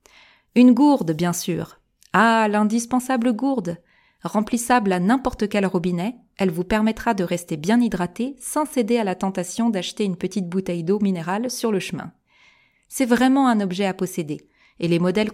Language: French